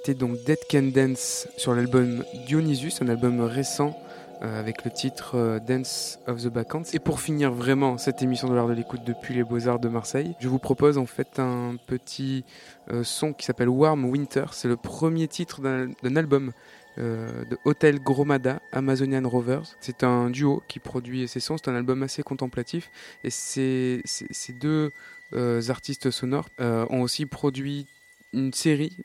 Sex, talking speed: male, 170 wpm